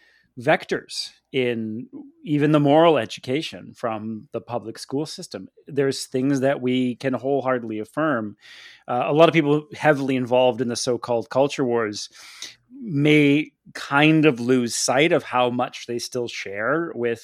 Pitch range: 115-135 Hz